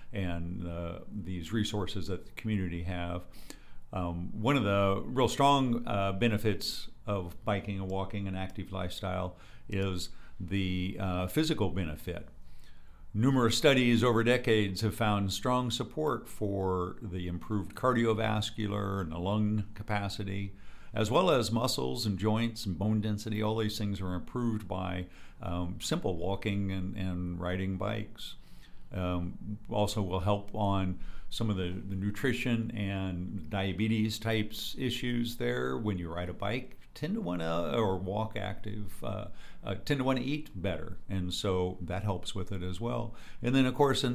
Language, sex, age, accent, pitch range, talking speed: English, male, 60-79, American, 90-110 Hz, 155 wpm